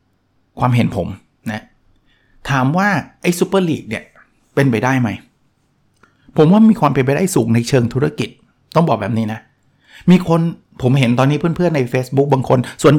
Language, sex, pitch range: Thai, male, 115-150 Hz